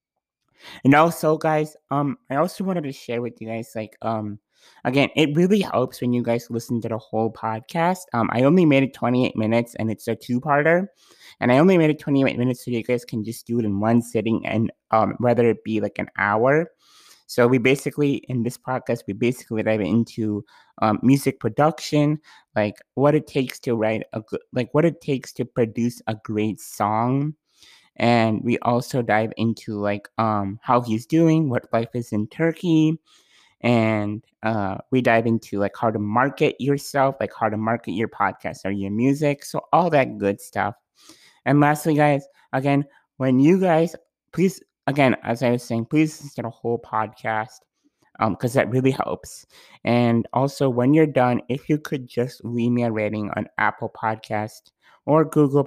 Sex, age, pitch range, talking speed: male, 20-39, 110-140 Hz, 190 wpm